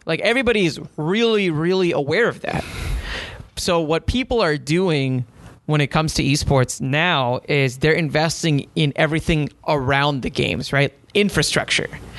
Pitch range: 140-175 Hz